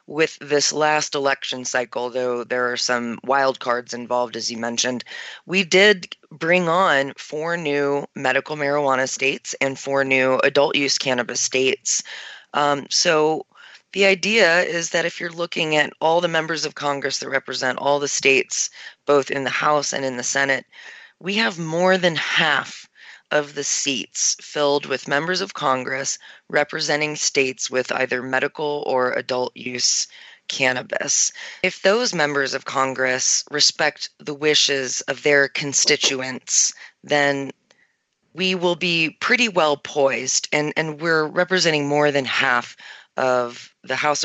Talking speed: 145 wpm